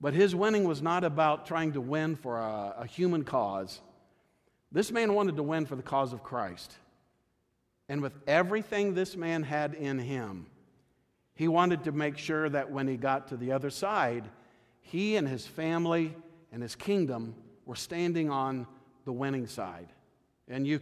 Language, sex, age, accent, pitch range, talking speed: English, male, 50-69, American, 135-170 Hz, 175 wpm